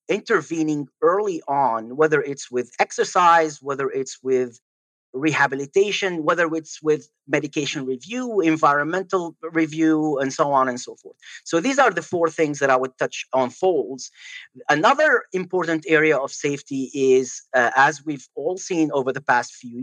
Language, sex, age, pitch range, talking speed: English, male, 40-59, 130-170 Hz, 155 wpm